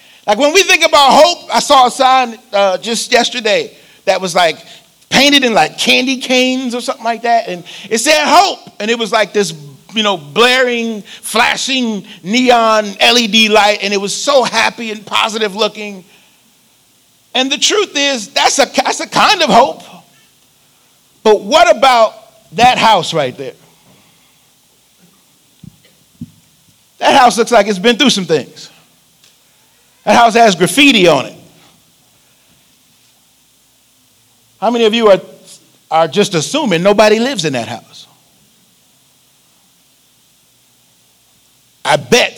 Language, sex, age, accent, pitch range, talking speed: English, male, 40-59, American, 180-250 Hz, 135 wpm